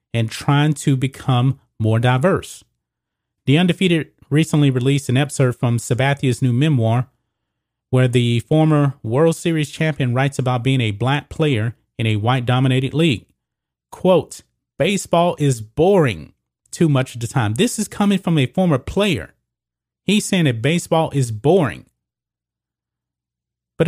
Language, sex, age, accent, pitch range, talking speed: English, male, 30-49, American, 120-150 Hz, 140 wpm